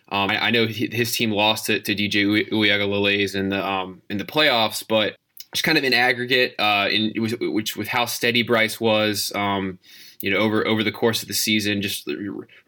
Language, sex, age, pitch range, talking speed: English, male, 20-39, 100-115 Hz, 215 wpm